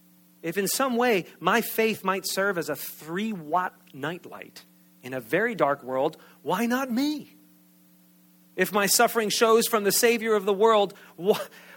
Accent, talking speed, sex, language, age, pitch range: American, 155 wpm, male, English, 40-59, 135-205 Hz